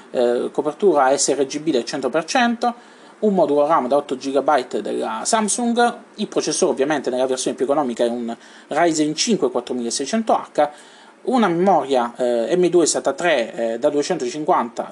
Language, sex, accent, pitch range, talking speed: Italian, male, native, 135-210 Hz, 125 wpm